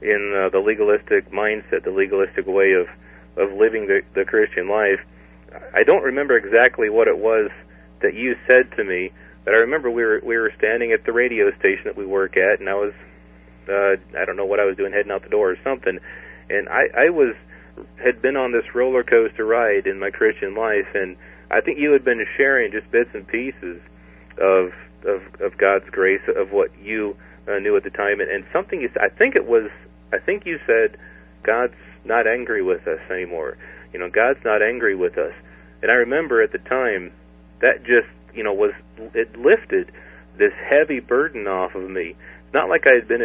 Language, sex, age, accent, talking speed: English, male, 40-59, American, 205 wpm